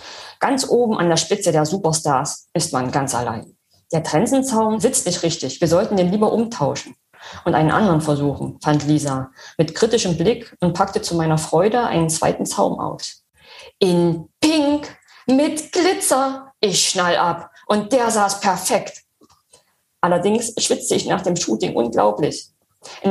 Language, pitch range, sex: German, 155-205 Hz, female